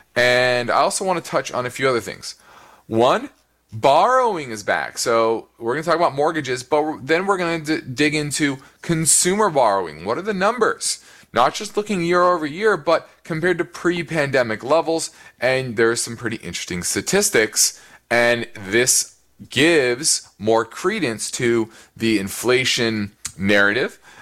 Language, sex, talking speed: English, male, 150 wpm